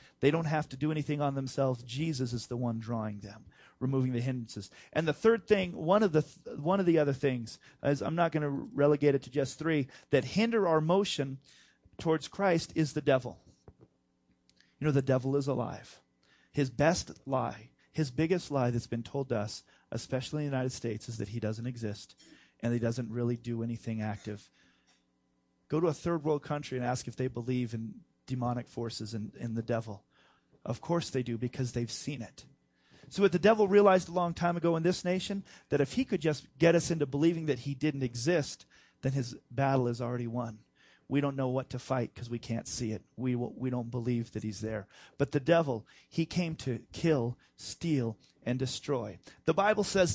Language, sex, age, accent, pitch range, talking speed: English, male, 30-49, American, 120-160 Hz, 205 wpm